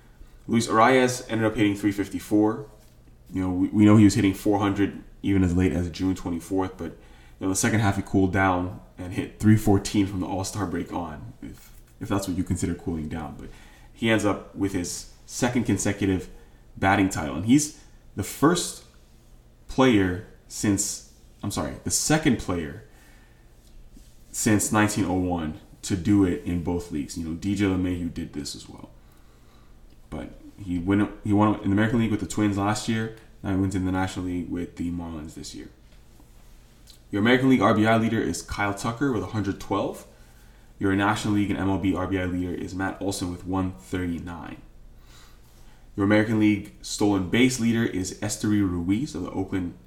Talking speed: 175 wpm